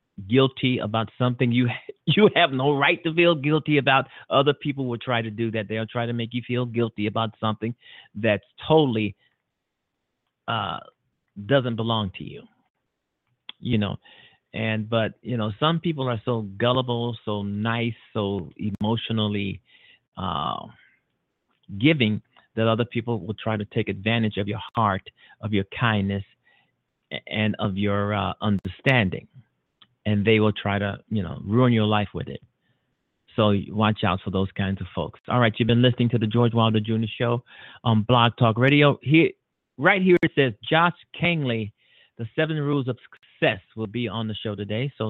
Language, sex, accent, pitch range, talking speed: English, male, American, 110-140 Hz, 165 wpm